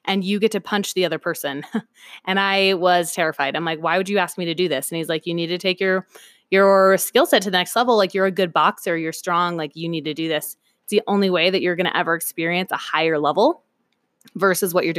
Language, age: English, 20-39